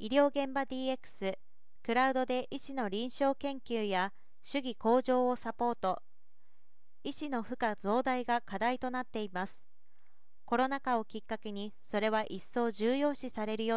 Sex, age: female, 40-59